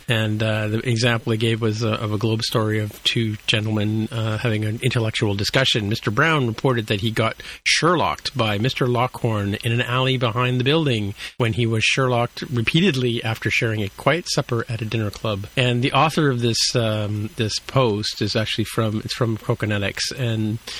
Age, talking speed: 40-59, 190 wpm